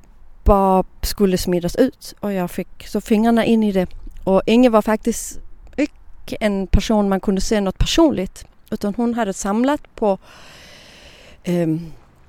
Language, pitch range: Danish, 185-230 Hz